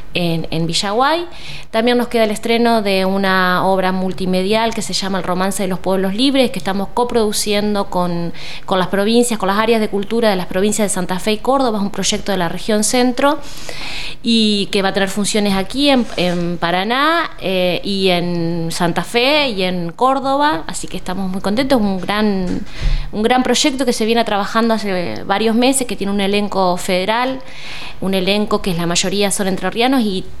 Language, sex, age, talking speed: Spanish, female, 20-39, 190 wpm